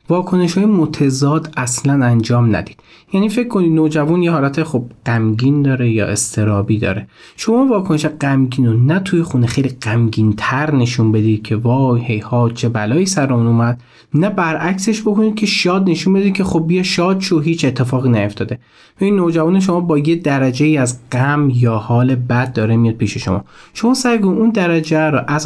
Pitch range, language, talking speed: 120-170 Hz, Persian, 170 wpm